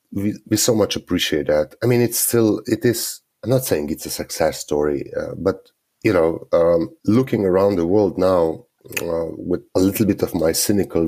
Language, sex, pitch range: English, male, 85-115 Hz